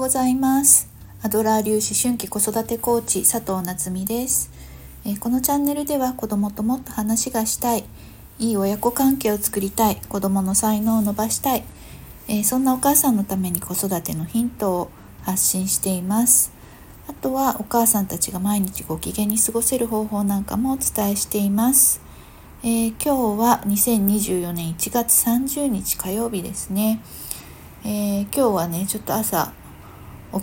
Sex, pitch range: female, 180-235 Hz